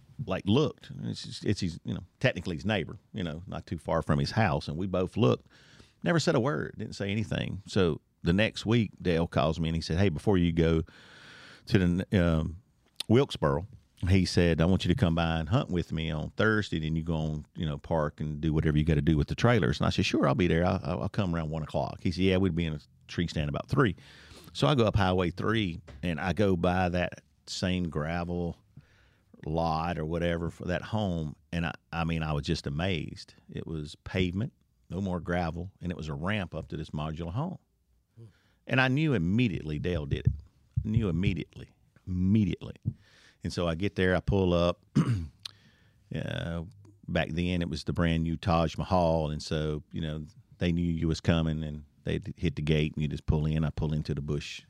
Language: English